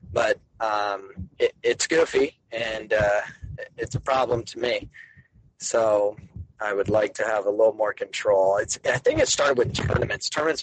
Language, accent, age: English, American, 30-49